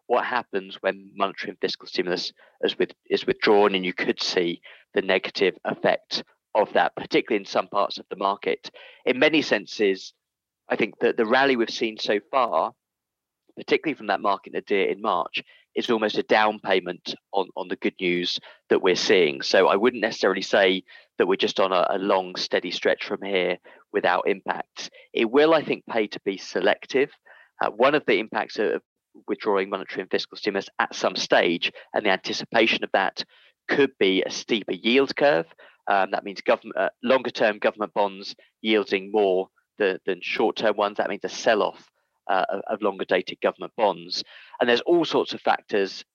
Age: 30-49